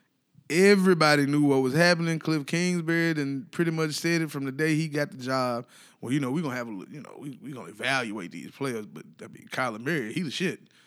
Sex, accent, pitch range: male, American, 140-170 Hz